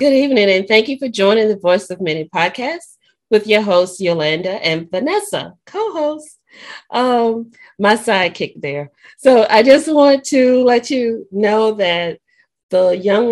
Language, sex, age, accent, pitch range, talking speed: English, female, 40-59, American, 180-245 Hz, 160 wpm